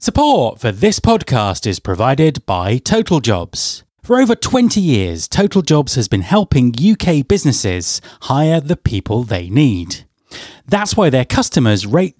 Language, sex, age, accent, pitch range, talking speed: English, male, 30-49, British, 110-175 Hz, 150 wpm